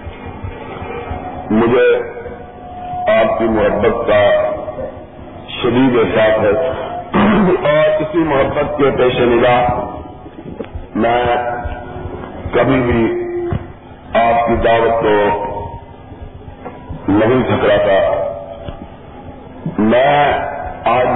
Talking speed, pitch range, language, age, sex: 70 wpm, 105-125 Hz, Urdu, 50-69, male